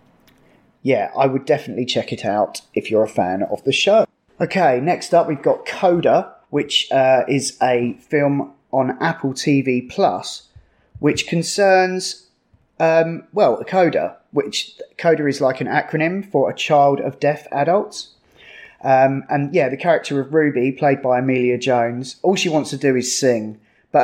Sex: male